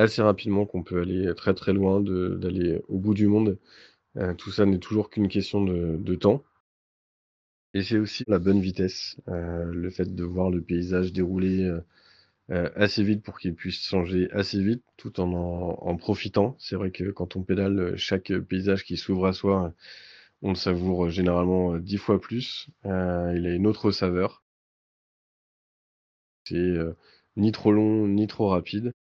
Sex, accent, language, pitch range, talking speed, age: male, French, French, 90-100 Hz, 170 wpm, 20-39